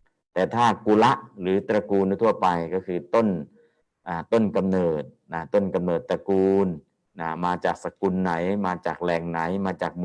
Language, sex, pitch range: Thai, male, 90-100 Hz